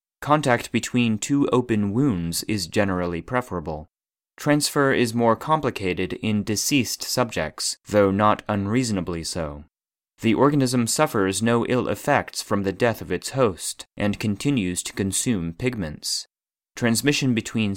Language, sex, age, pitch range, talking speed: English, male, 30-49, 90-125 Hz, 130 wpm